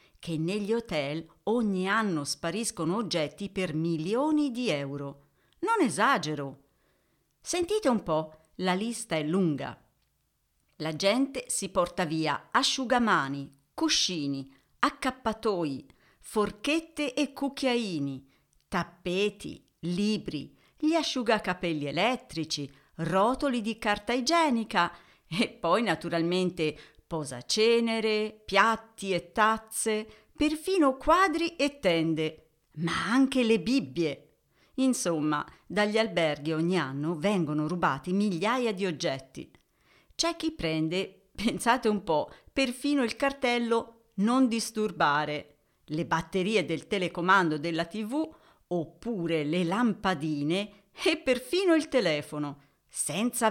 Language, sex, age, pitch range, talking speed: Italian, female, 50-69, 160-240 Hz, 100 wpm